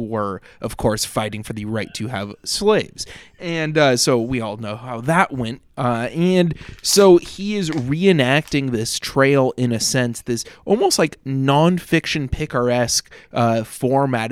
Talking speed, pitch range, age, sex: 155 wpm, 115-140 Hz, 20-39, male